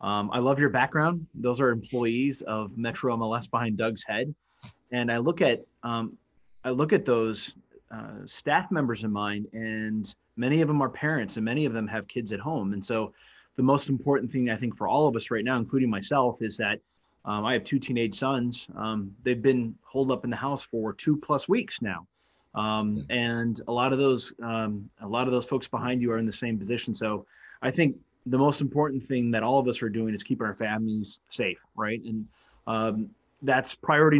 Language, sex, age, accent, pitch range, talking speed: English, male, 30-49, American, 110-130 Hz, 210 wpm